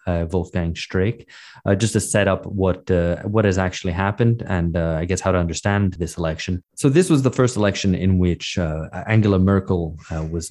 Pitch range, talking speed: 90-115 Hz, 200 wpm